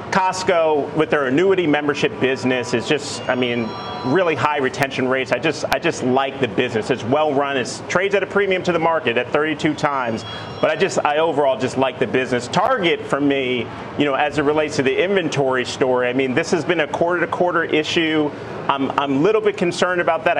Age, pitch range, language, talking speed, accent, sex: 30-49, 125-160 Hz, English, 215 wpm, American, male